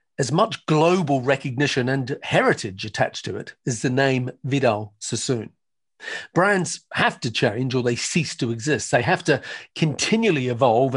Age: 40-59